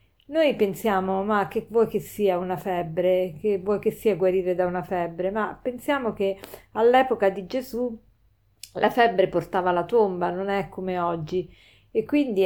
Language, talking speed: Italian, 165 wpm